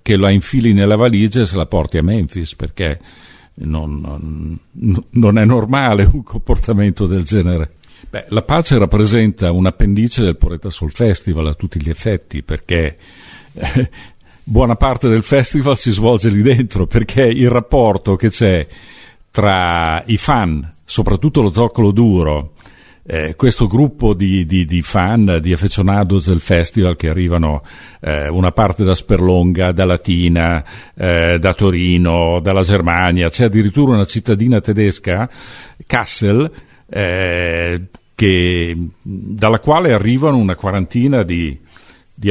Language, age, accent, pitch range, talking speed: Italian, 50-69, native, 85-115 Hz, 140 wpm